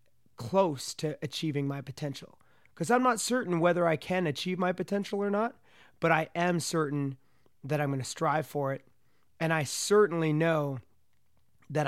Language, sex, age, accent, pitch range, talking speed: English, male, 30-49, American, 140-165 Hz, 165 wpm